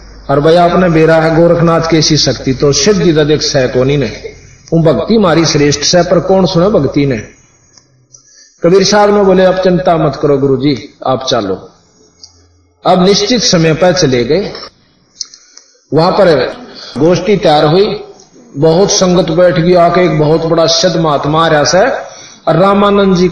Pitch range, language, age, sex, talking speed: 150-195 Hz, Hindi, 50-69, male, 155 wpm